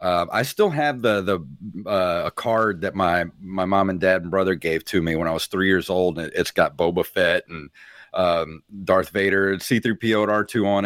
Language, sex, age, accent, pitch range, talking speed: English, male, 40-59, American, 95-125 Hz, 220 wpm